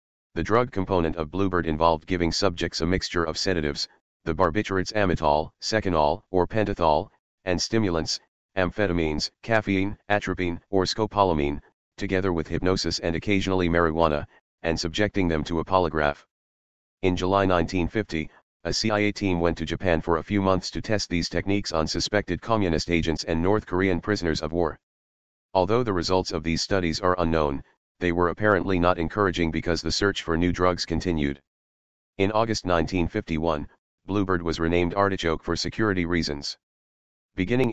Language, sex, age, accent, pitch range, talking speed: English, male, 40-59, American, 80-100 Hz, 150 wpm